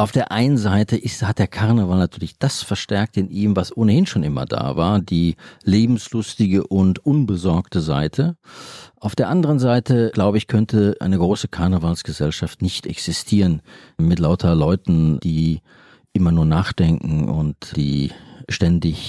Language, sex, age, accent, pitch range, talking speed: German, male, 40-59, German, 90-115 Hz, 140 wpm